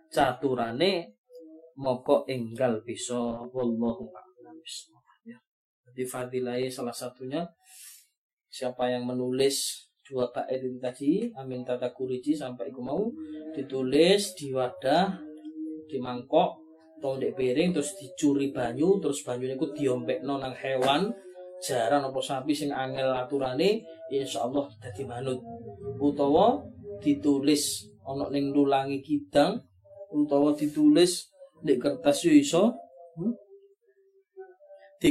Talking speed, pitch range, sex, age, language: 95 wpm, 125-165 Hz, male, 20-39, Malay